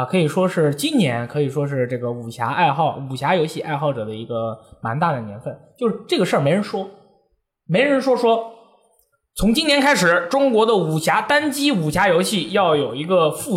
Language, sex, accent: Chinese, male, native